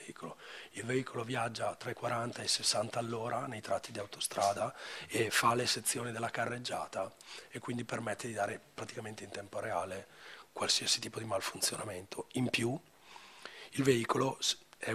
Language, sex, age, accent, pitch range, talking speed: Italian, male, 40-59, native, 115-130 Hz, 155 wpm